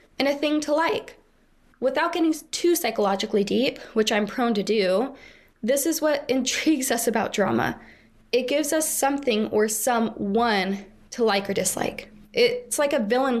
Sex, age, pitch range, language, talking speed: female, 10-29, 215-265 Hz, English, 160 wpm